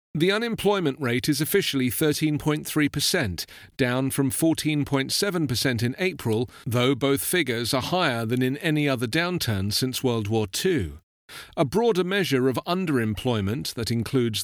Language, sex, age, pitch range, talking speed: English, male, 40-59, 115-160 Hz, 135 wpm